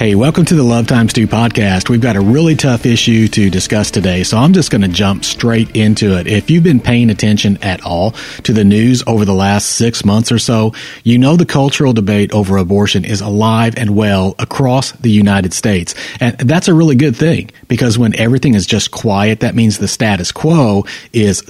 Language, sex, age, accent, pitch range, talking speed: English, male, 40-59, American, 100-125 Hz, 210 wpm